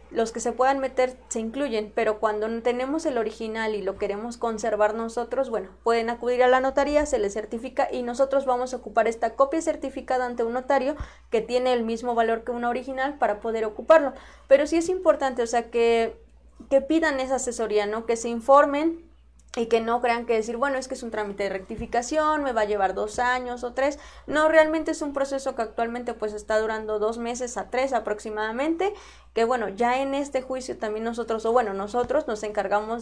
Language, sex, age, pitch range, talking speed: Spanish, female, 20-39, 220-265 Hz, 205 wpm